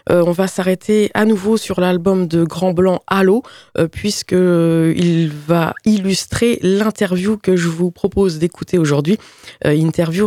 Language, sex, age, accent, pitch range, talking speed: French, female, 20-39, French, 155-195 Hz, 145 wpm